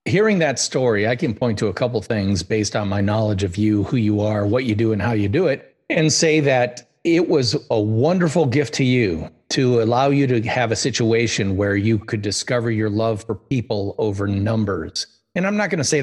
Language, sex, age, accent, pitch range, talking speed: English, male, 40-59, American, 110-135 Hz, 225 wpm